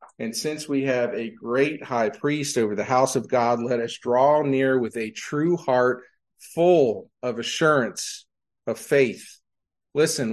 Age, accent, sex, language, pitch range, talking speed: 50-69, American, male, English, 125-185 Hz, 155 wpm